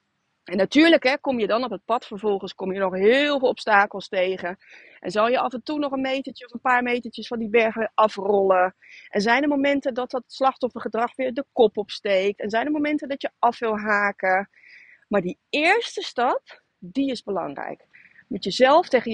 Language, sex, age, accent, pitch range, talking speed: Dutch, female, 30-49, Dutch, 195-275 Hz, 200 wpm